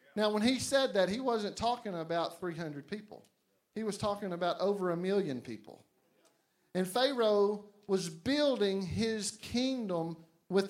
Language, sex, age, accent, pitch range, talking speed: English, male, 50-69, American, 165-230 Hz, 145 wpm